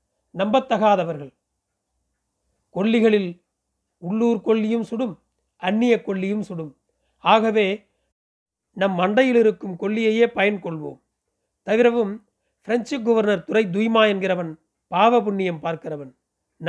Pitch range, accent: 175-220 Hz, native